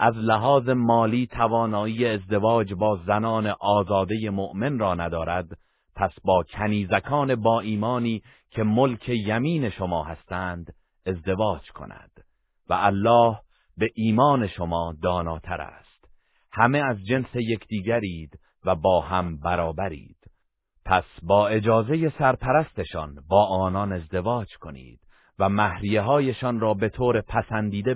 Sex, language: male, Persian